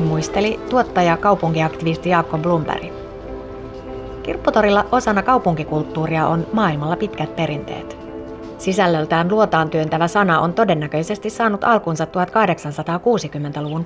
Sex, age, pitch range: female, 30-49, 155-205 Hz